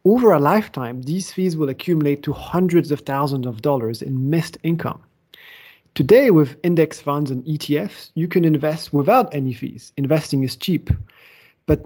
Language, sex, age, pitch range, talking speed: English, male, 30-49, 135-175 Hz, 160 wpm